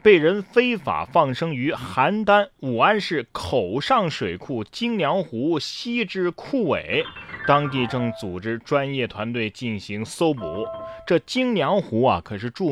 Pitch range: 115-185 Hz